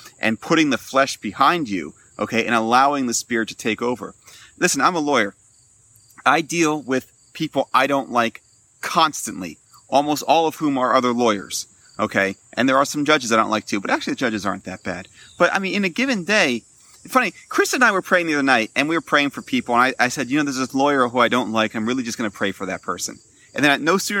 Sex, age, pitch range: male, 30-49, 115-155 Hz